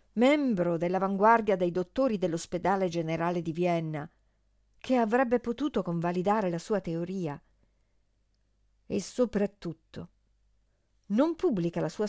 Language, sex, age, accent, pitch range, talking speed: Italian, female, 50-69, native, 165-255 Hz, 105 wpm